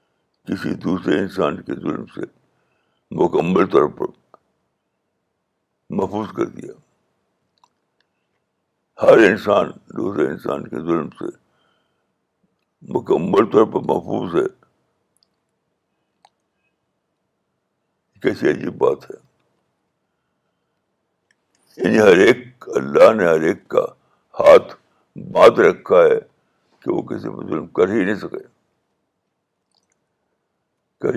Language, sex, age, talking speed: Urdu, male, 60-79, 95 wpm